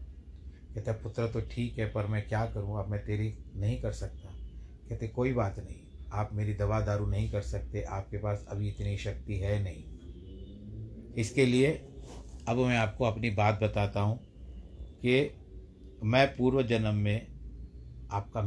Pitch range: 90-110 Hz